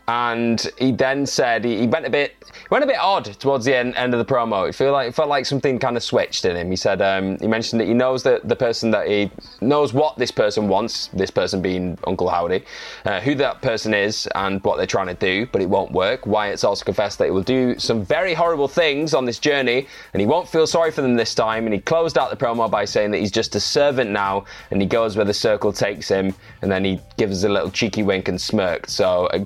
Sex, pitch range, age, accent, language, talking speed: male, 105-140 Hz, 10-29, British, English, 260 wpm